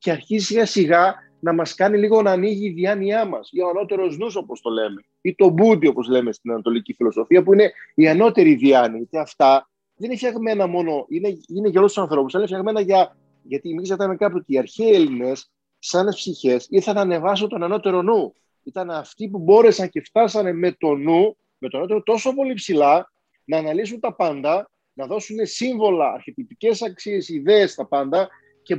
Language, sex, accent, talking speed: Greek, male, native, 265 wpm